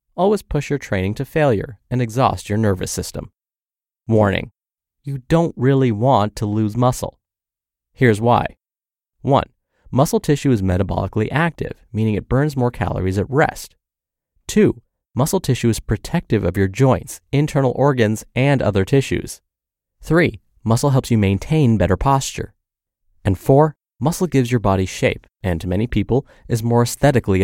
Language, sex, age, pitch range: English, male, 30-49, 100-140 Hz